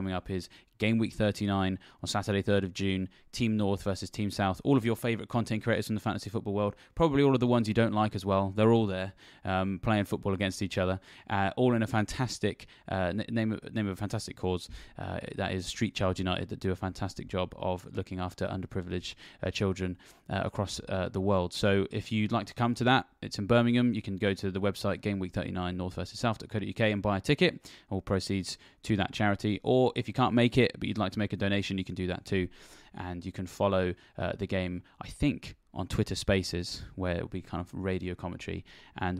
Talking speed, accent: 230 wpm, British